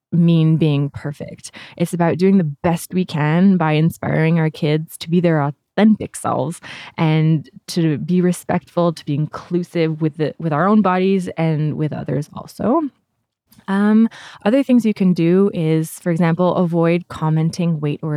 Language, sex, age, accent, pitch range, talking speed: French, female, 20-39, American, 150-180 Hz, 160 wpm